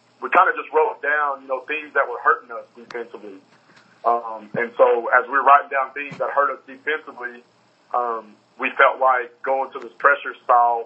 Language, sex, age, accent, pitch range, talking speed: English, male, 30-49, American, 120-145 Hz, 200 wpm